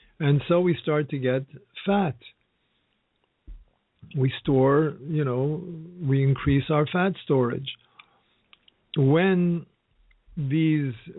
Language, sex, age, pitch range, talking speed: English, male, 50-69, 130-155 Hz, 95 wpm